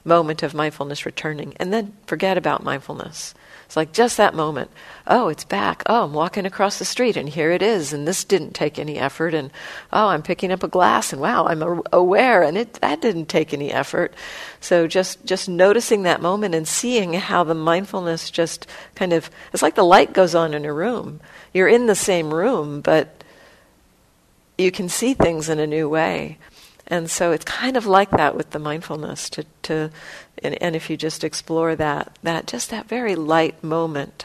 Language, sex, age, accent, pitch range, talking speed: English, female, 50-69, American, 155-190 Hz, 200 wpm